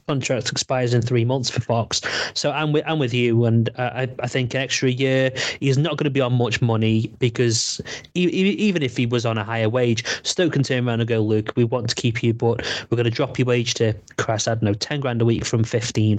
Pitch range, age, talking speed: 115-145 Hz, 30-49, 260 wpm